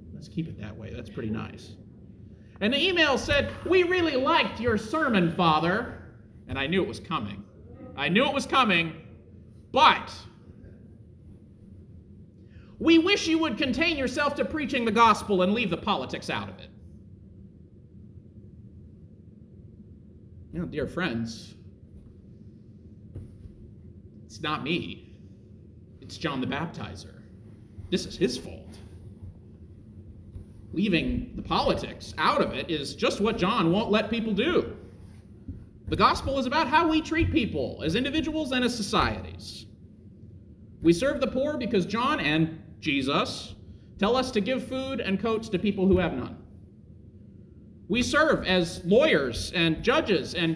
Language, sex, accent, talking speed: English, male, American, 140 wpm